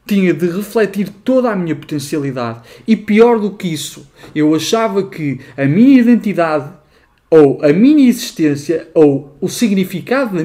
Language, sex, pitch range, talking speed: Portuguese, male, 130-190 Hz, 150 wpm